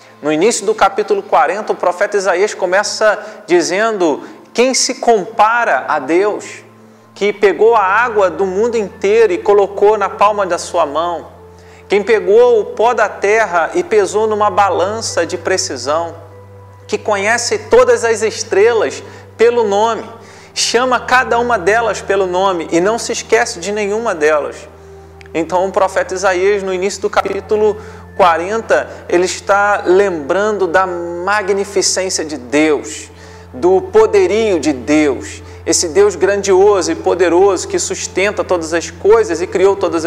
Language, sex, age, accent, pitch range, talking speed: Portuguese, male, 40-59, Brazilian, 170-260 Hz, 140 wpm